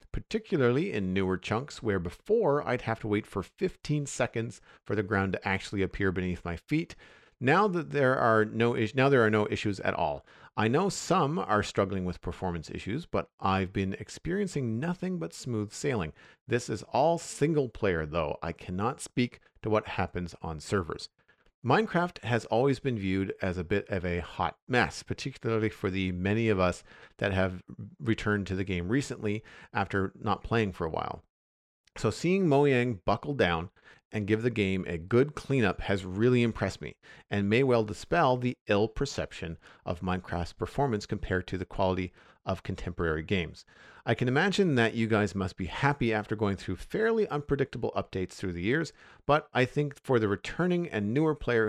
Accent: American